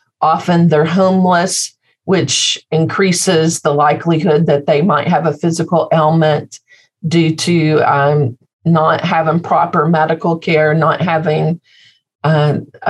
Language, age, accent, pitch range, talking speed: English, 50-69, American, 150-170 Hz, 115 wpm